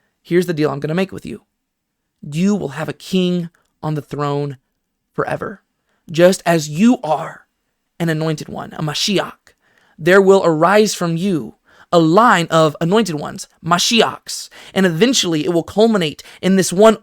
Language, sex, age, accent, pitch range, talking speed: English, male, 20-39, American, 155-205 Hz, 160 wpm